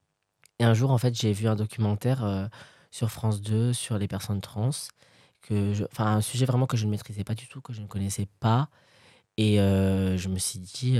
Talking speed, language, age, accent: 225 wpm, French, 20-39, French